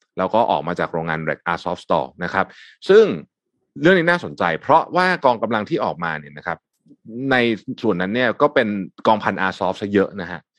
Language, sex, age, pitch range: Thai, male, 20-39, 95-155 Hz